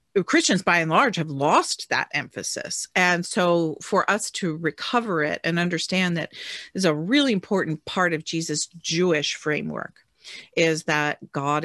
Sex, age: female, 50-69